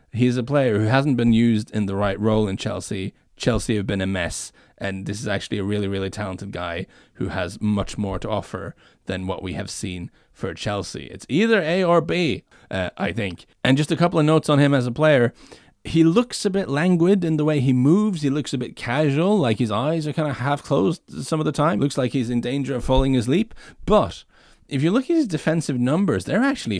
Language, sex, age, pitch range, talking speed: English, male, 30-49, 105-155 Hz, 230 wpm